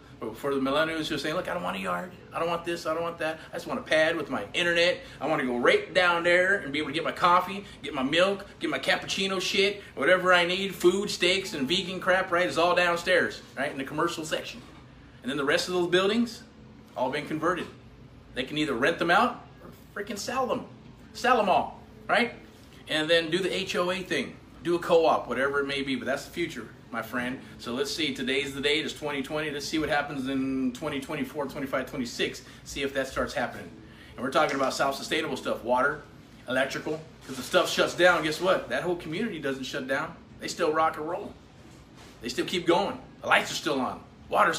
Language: English